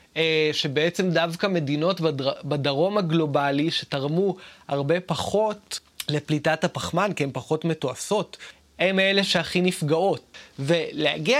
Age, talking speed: 20-39, 105 wpm